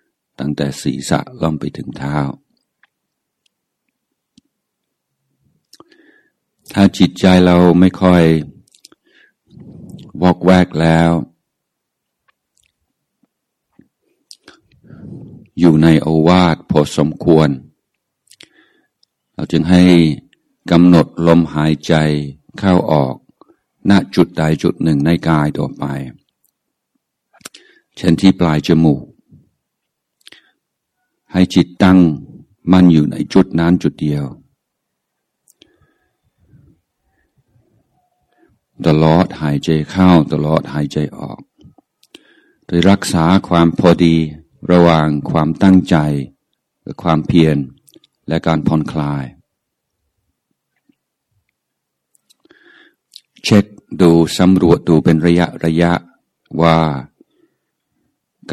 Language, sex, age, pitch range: Thai, male, 60-79, 75-90 Hz